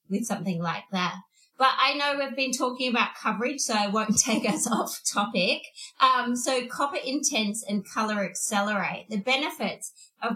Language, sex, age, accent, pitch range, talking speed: English, female, 20-39, Australian, 200-255 Hz, 170 wpm